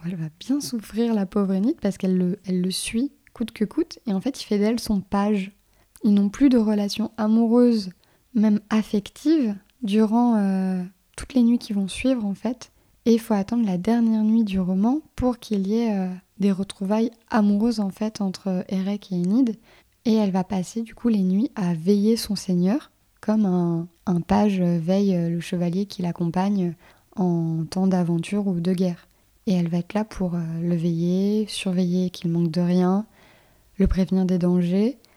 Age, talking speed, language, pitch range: 20-39, 185 wpm, French, 185-220 Hz